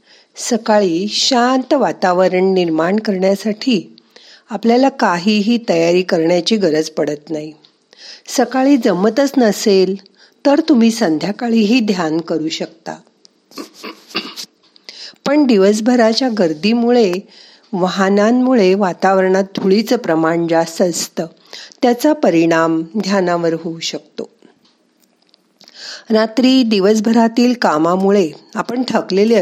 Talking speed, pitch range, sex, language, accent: 80 wpm, 180-235 Hz, female, Marathi, native